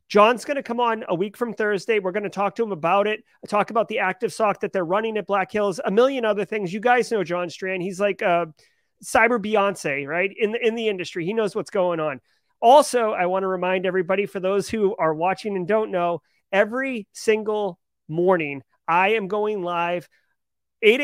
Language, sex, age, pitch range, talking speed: English, male, 30-49, 185-220 Hz, 210 wpm